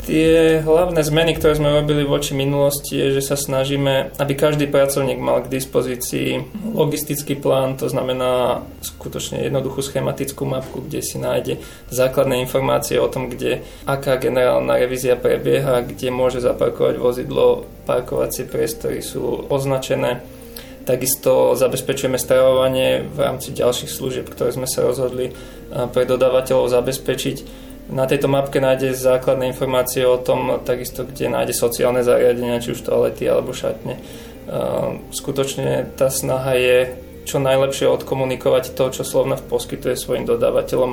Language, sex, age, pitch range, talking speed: Slovak, male, 20-39, 125-145 Hz, 135 wpm